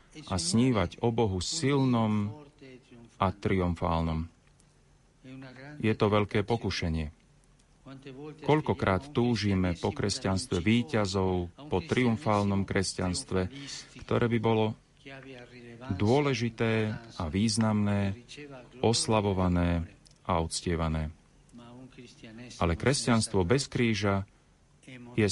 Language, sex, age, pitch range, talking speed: Slovak, male, 40-59, 95-130 Hz, 80 wpm